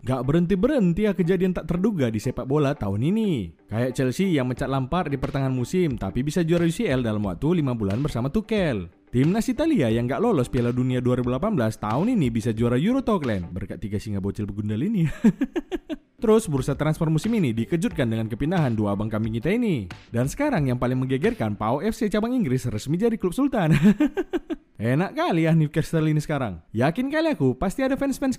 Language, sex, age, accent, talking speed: Indonesian, male, 20-39, native, 185 wpm